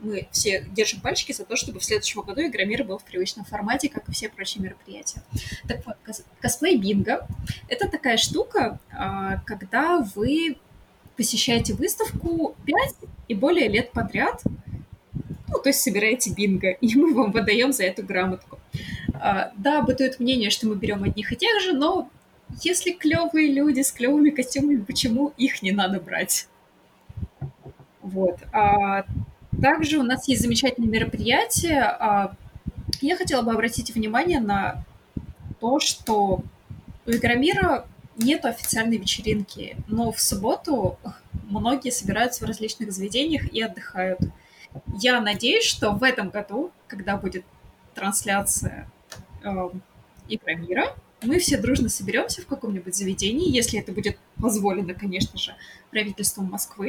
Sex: female